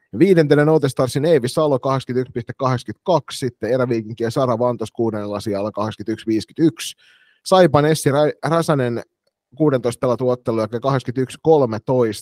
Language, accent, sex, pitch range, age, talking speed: Finnish, native, male, 110-135 Hz, 30-49, 80 wpm